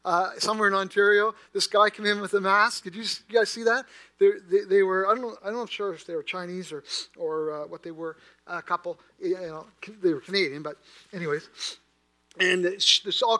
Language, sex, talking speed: English, male, 220 wpm